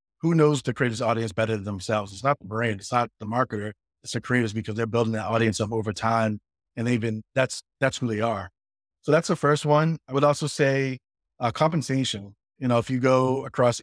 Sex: male